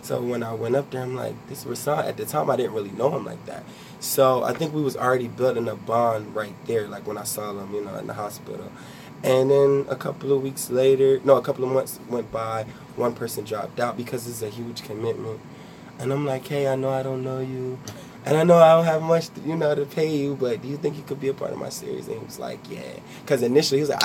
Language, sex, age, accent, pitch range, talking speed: English, male, 20-39, American, 115-135 Hz, 270 wpm